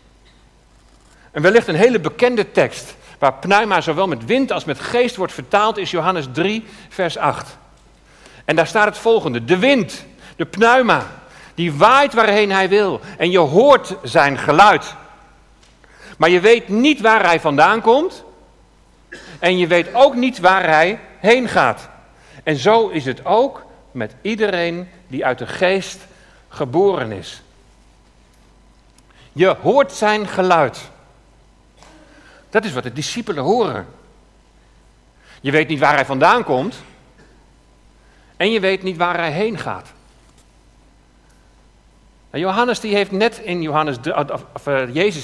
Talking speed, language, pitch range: 130 wpm, Dutch, 135-210 Hz